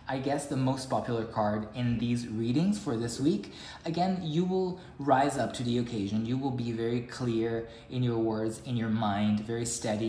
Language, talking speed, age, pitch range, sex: English, 195 wpm, 20-39, 115-160 Hz, male